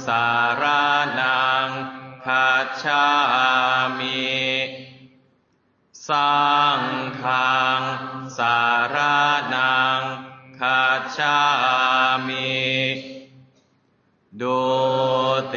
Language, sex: Chinese, male